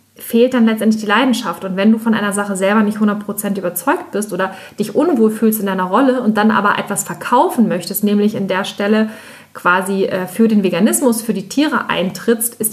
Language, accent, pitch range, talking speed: German, German, 200-235 Hz, 200 wpm